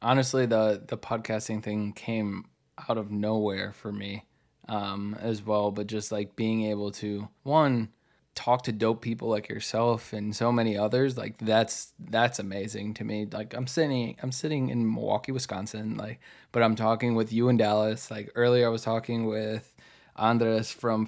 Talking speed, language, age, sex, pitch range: 175 wpm, English, 20-39, male, 110-120 Hz